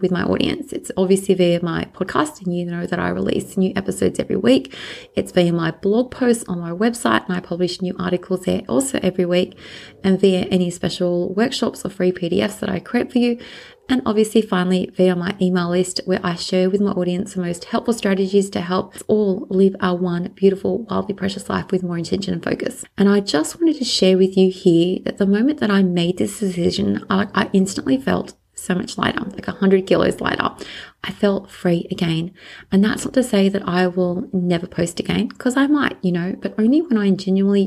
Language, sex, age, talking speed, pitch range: English, female, 30-49, 215 wpm, 185-215 Hz